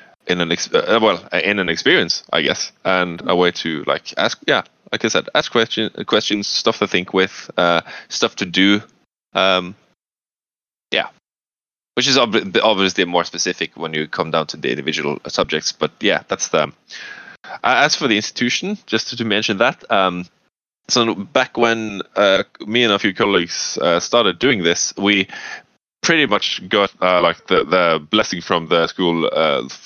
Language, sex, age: English, male, 10-29